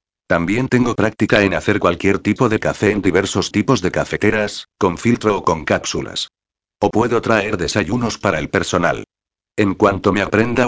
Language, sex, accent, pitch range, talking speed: Spanish, male, Spanish, 95-115 Hz, 170 wpm